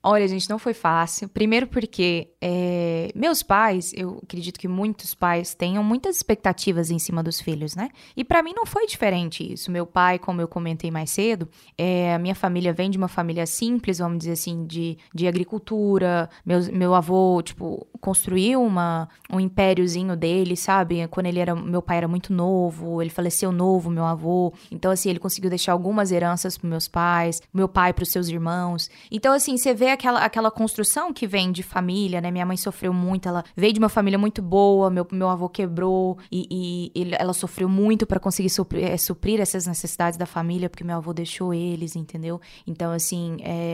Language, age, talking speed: Portuguese, 20-39, 195 wpm